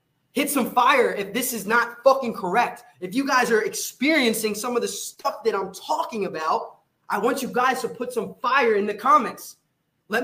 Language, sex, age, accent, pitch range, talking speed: English, male, 20-39, American, 195-255 Hz, 200 wpm